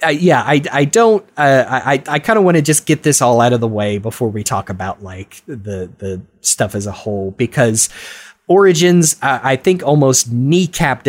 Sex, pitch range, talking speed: male, 115-145 Hz, 205 wpm